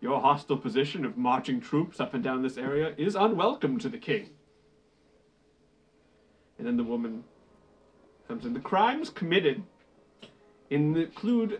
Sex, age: male, 30-49